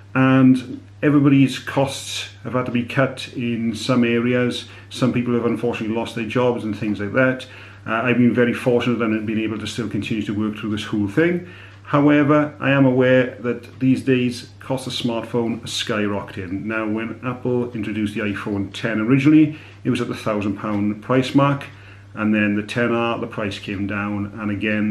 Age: 40-59